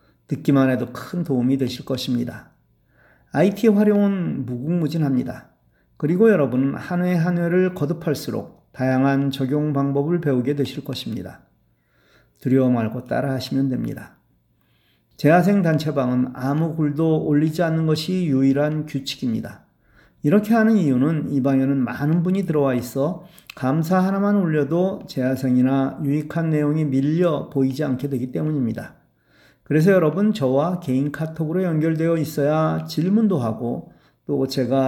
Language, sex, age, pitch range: Korean, male, 40-59, 130-170 Hz